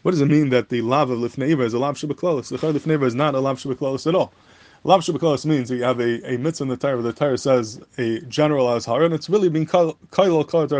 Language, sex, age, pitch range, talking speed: English, male, 20-39, 125-155 Hz, 265 wpm